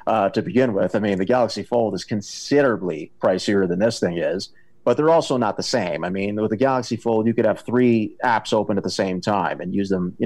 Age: 30-49